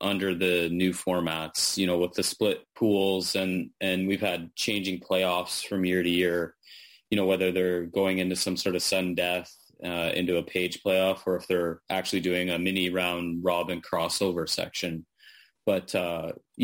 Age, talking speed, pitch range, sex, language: 30-49, 175 wpm, 90-105 Hz, male, English